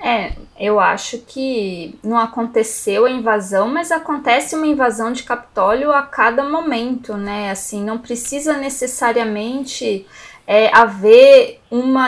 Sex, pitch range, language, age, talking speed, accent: female, 210-290 Hz, Portuguese, 20-39, 120 wpm, Brazilian